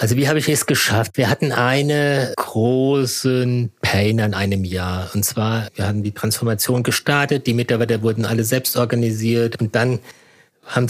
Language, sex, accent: German, male, German